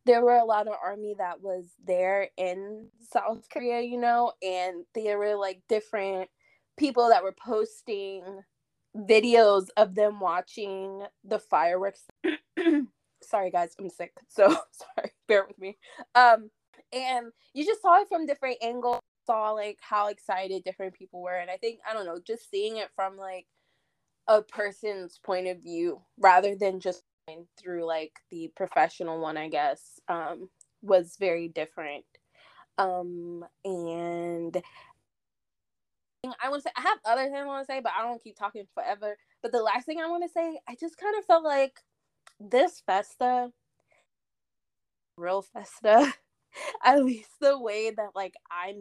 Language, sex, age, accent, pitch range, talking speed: English, female, 20-39, American, 185-245 Hz, 160 wpm